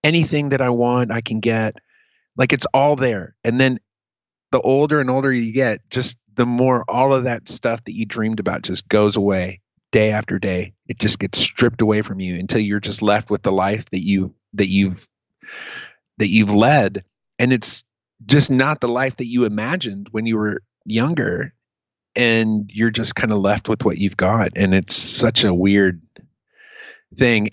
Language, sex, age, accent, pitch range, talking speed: English, male, 30-49, American, 105-140 Hz, 185 wpm